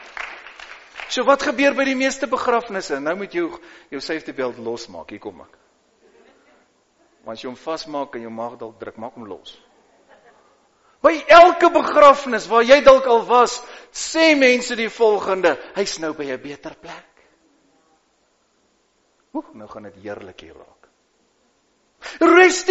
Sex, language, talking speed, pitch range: male, English, 145 wpm, 225-335 Hz